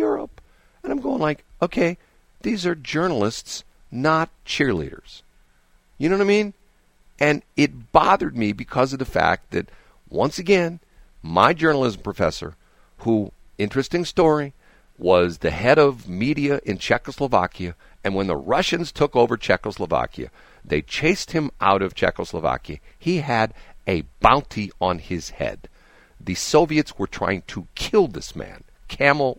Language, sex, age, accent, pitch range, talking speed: English, male, 50-69, American, 105-160 Hz, 140 wpm